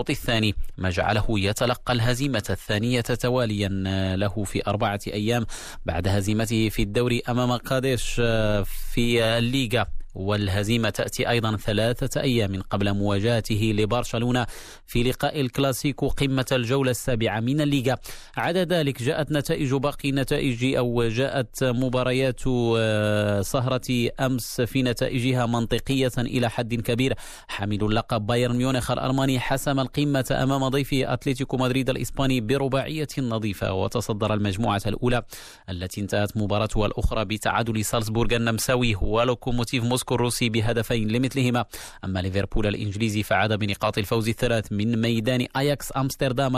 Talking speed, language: 120 wpm, Arabic